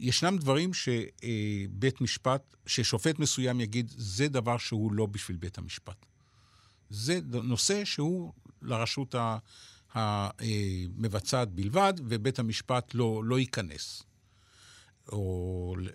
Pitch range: 100-130 Hz